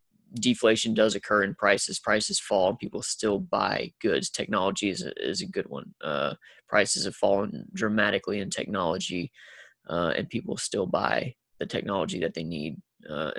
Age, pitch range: 20-39, 110-125 Hz